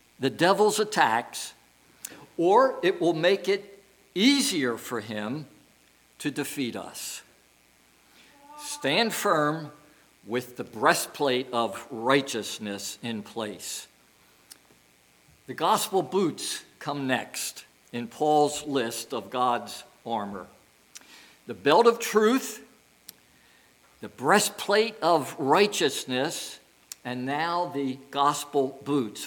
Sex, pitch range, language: male, 130-205 Hz, English